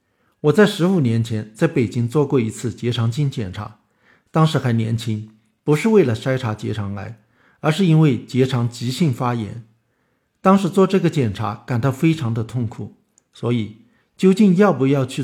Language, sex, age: Chinese, male, 50-69